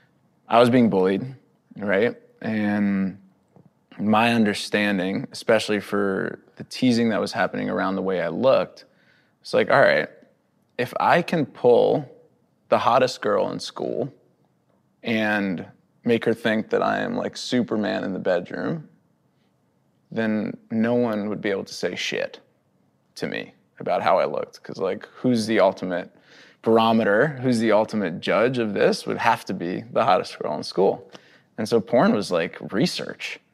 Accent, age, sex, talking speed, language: American, 20-39, male, 155 wpm, English